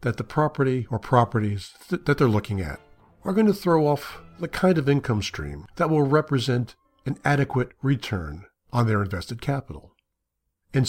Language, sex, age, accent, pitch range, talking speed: English, male, 60-79, American, 105-145 Hz, 165 wpm